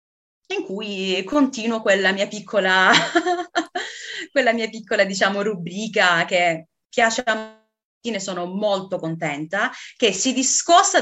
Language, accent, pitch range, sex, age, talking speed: Italian, native, 170-210 Hz, female, 30-49, 120 wpm